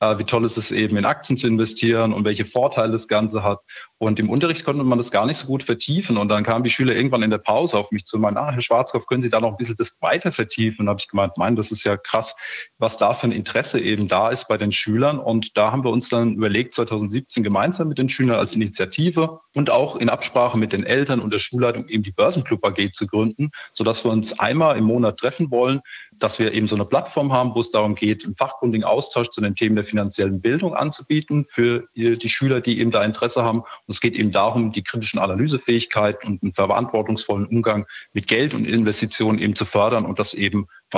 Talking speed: 235 wpm